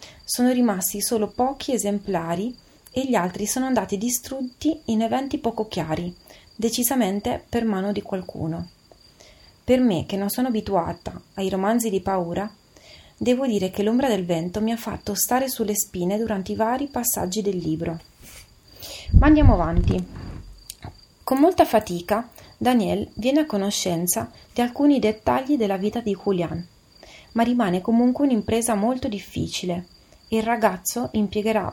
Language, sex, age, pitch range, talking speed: Italian, female, 30-49, 190-240 Hz, 140 wpm